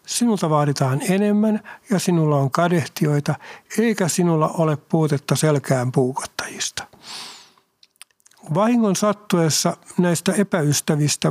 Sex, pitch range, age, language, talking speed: male, 150-190 Hz, 60-79, Finnish, 90 wpm